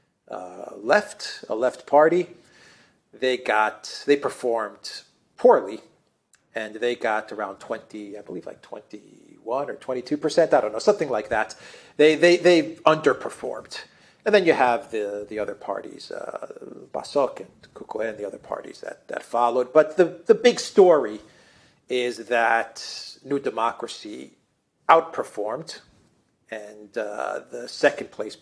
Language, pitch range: English, 110-175 Hz